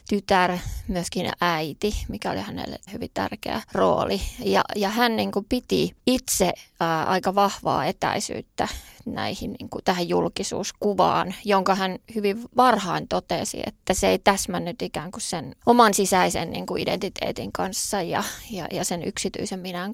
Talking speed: 145 wpm